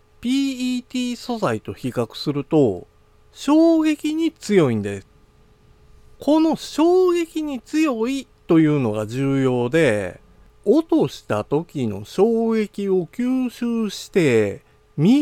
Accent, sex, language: native, male, Japanese